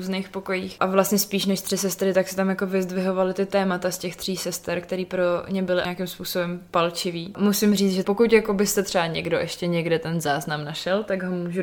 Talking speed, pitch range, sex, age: 210 wpm, 180-195 Hz, female, 20-39